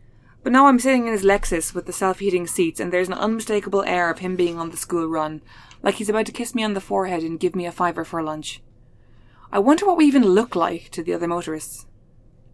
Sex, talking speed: female, 240 wpm